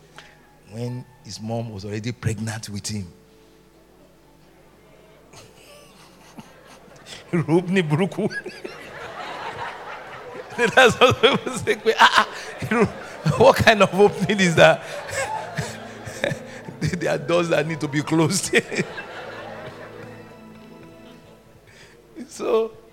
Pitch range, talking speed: 115-175 Hz, 65 wpm